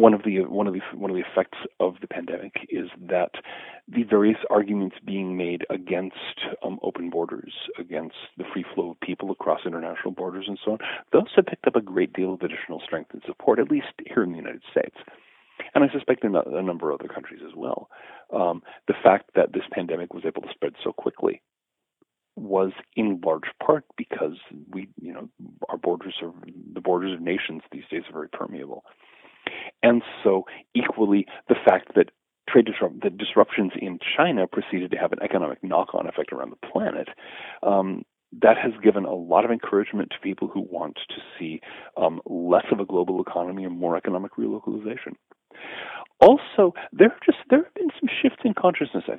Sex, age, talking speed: male, 40-59, 185 wpm